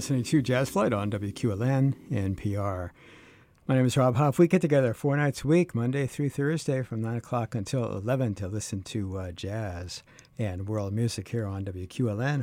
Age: 60-79